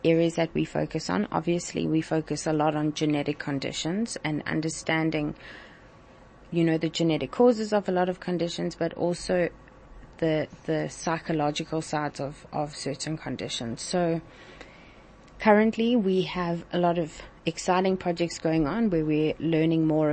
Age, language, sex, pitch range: 30-49, English, female, 145-170 Hz